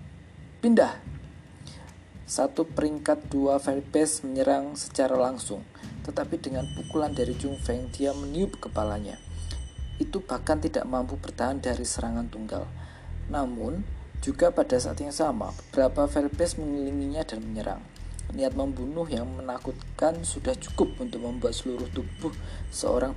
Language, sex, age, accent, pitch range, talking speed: Indonesian, male, 40-59, native, 105-145 Hz, 120 wpm